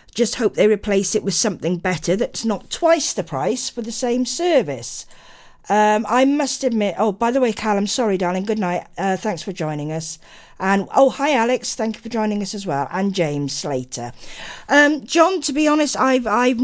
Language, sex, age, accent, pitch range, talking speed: English, female, 50-69, British, 160-220 Hz, 200 wpm